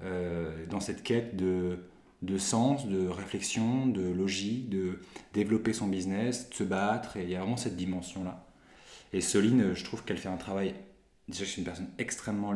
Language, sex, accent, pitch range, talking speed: French, male, French, 90-105 Hz, 180 wpm